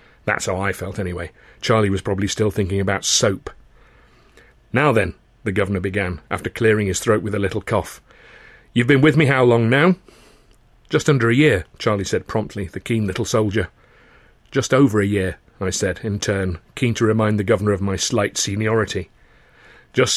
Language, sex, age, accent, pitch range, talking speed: English, male, 40-59, British, 105-135 Hz, 180 wpm